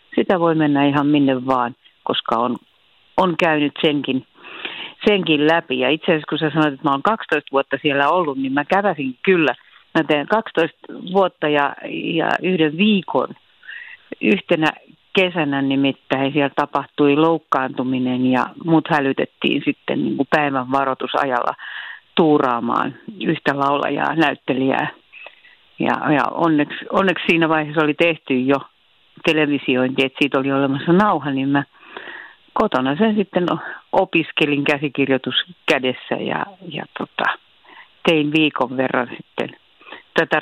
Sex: female